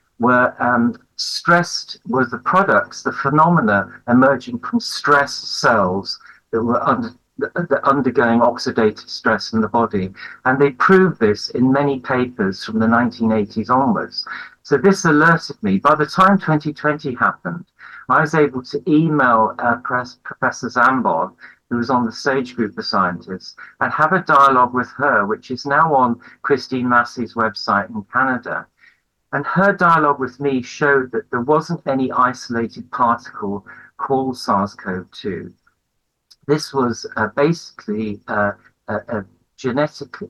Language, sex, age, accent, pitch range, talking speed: English, male, 50-69, British, 120-150 Hz, 140 wpm